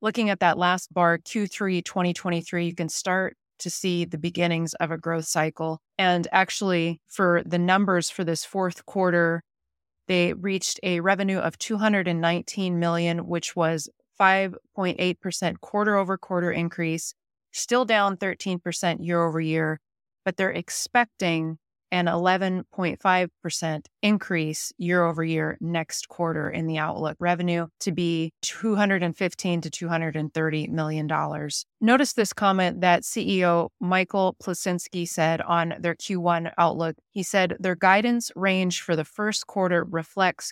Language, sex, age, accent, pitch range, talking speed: English, female, 30-49, American, 165-190 Hz, 130 wpm